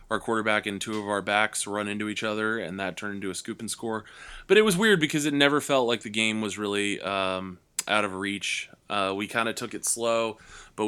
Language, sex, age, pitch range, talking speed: English, male, 20-39, 95-110 Hz, 245 wpm